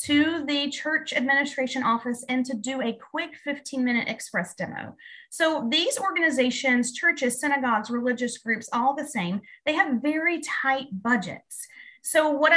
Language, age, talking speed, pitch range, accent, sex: English, 30-49, 150 wpm, 225-300 Hz, American, female